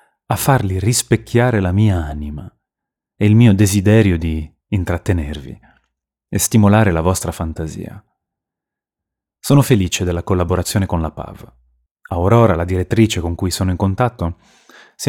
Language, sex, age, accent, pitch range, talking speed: Italian, male, 30-49, native, 85-110 Hz, 130 wpm